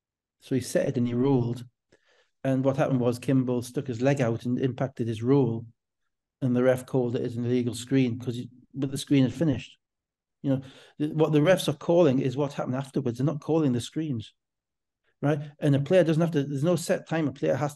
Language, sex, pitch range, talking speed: English, male, 130-160 Hz, 215 wpm